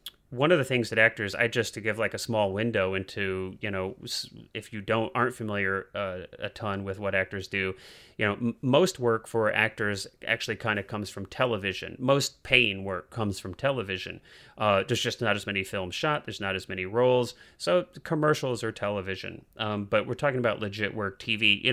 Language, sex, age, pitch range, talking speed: English, male, 30-49, 100-125 Hz, 200 wpm